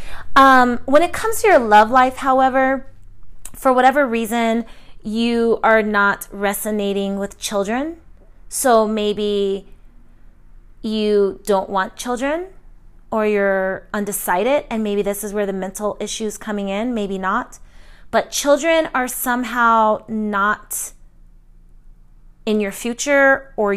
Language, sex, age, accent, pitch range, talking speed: English, female, 30-49, American, 190-245 Hz, 125 wpm